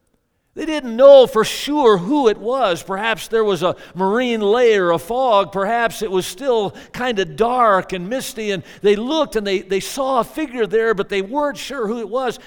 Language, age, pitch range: English, 50-69, 170-240 Hz